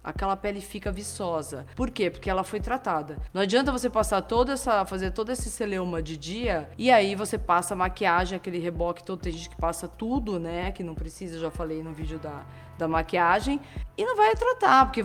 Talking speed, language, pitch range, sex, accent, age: 210 wpm, Portuguese, 180-235 Hz, female, Brazilian, 20-39